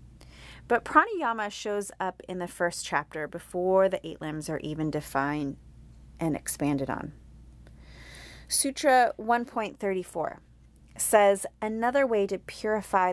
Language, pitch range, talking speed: English, 135-195 Hz, 115 wpm